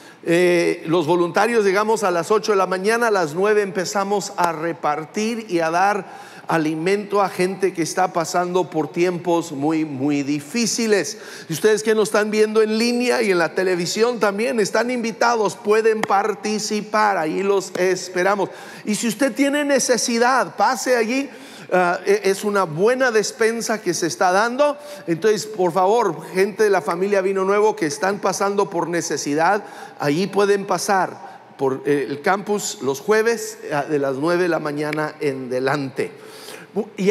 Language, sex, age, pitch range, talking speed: English, male, 50-69, 180-230 Hz, 155 wpm